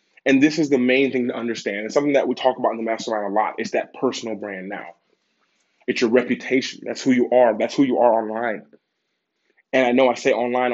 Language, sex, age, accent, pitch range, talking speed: English, male, 20-39, American, 120-140 Hz, 235 wpm